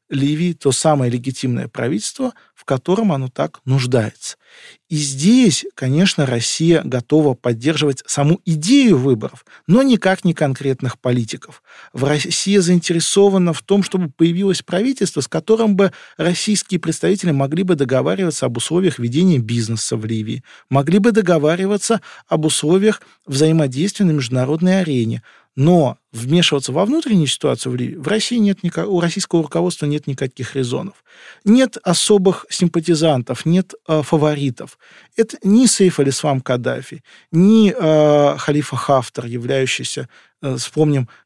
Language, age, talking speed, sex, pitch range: Russian, 40-59, 130 wpm, male, 135-185 Hz